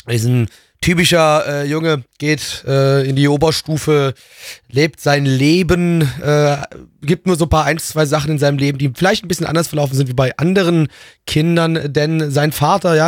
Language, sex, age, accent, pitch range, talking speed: German, male, 30-49, German, 140-170 Hz, 190 wpm